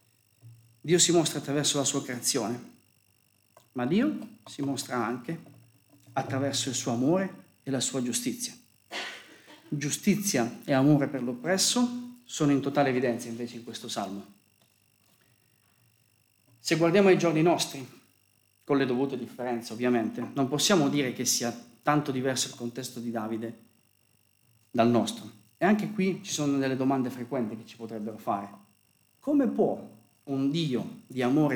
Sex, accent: male, native